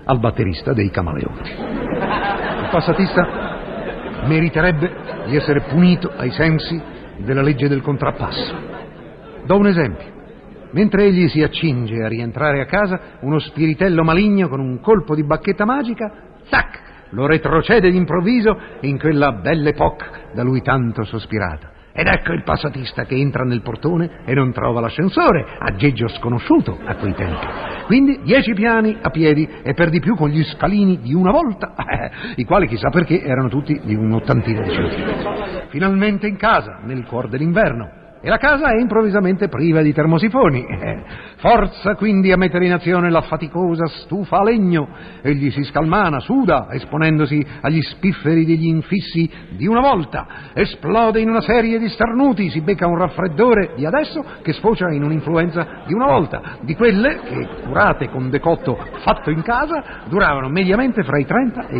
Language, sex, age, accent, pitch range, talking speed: Italian, male, 50-69, native, 145-205 Hz, 155 wpm